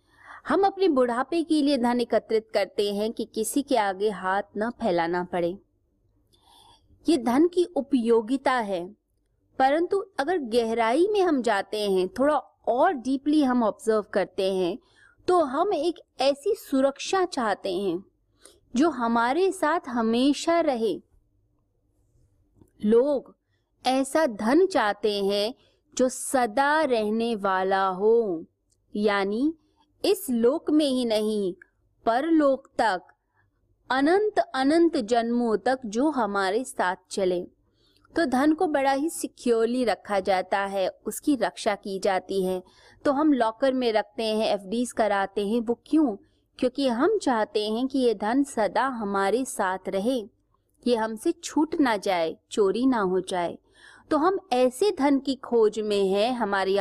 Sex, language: female, Hindi